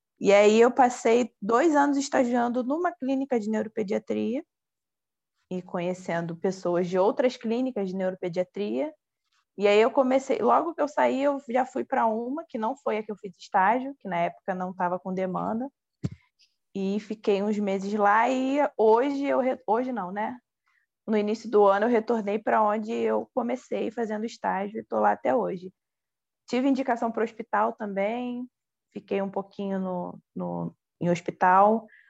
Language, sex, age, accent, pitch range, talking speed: Portuguese, female, 20-39, Brazilian, 195-245 Hz, 165 wpm